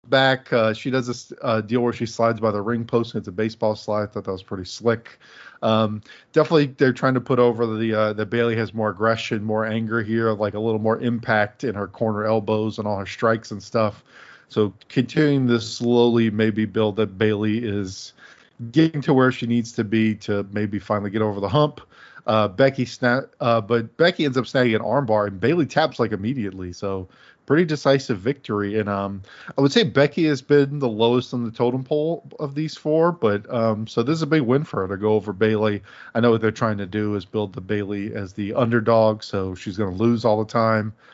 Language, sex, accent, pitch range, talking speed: English, male, American, 105-125 Hz, 225 wpm